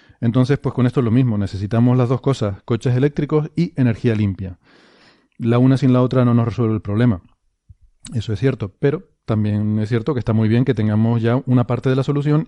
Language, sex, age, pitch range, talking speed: Spanish, male, 30-49, 110-130 Hz, 215 wpm